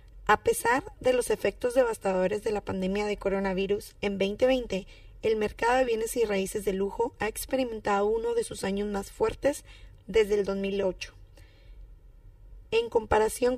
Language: English